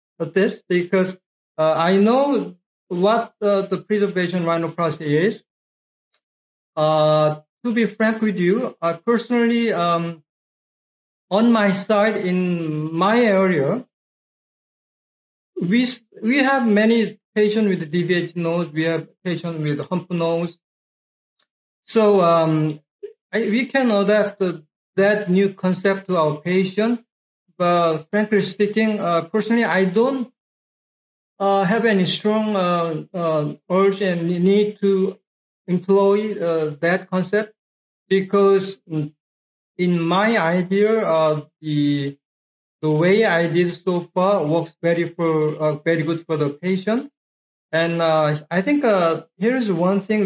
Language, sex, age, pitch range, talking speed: English, male, 50-69, 165-210 Hz, 125 wpm